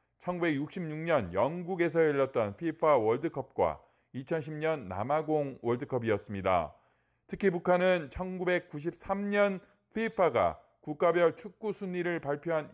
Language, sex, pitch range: Korean, male, 140-185 Hz